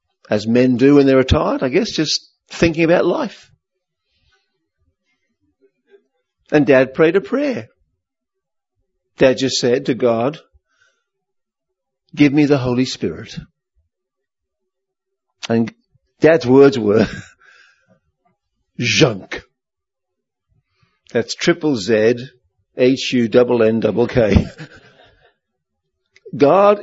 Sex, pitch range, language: male, 130-195 Hz, English